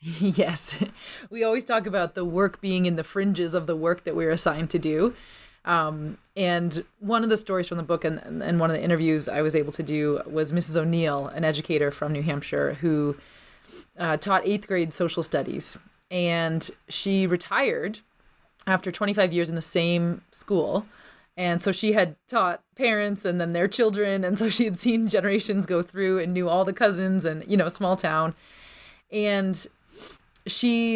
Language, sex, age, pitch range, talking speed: English, female, 30-49, 170-210 Hz, 180 wpm